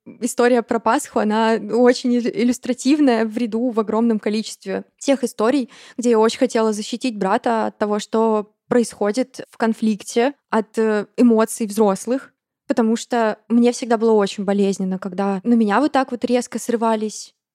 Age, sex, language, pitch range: 20-39, female, Russian, 220-250 Hz